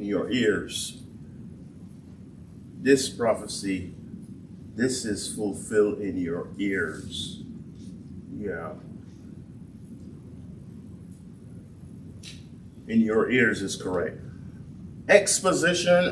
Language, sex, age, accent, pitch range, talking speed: English, male, 50-69, American, 115-160 Hz, 65 wpm